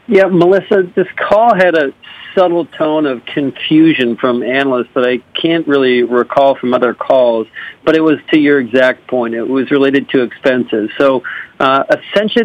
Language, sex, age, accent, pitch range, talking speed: English, male, 50-69, American, 125-150 Hz, 170 wpm